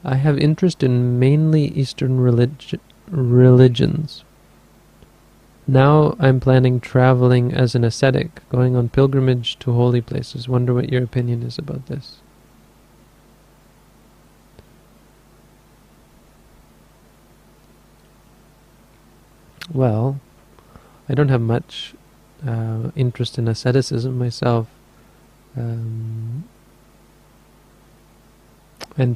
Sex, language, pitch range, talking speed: male, English, 115-135 Hz, 80 wpm